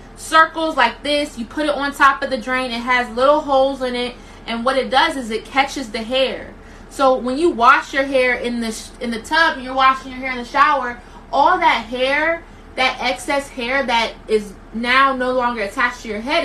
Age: 20-39